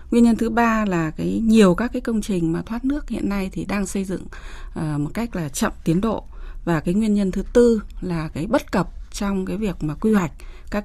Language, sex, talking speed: Vietnamese, female, 240 wpm